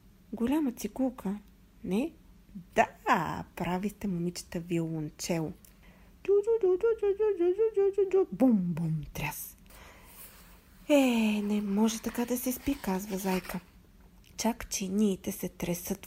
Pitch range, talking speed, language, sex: 180-255 Hz, 85 wpm, Bulgarian, female